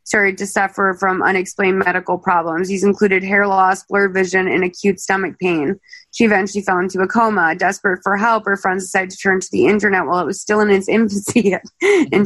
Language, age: English, 20-39